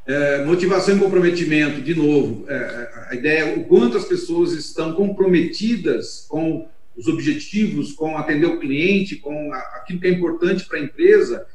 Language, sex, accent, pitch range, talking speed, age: Portuguese, male, Brazilian, 145-205 Hz, 165 wpm, 40-59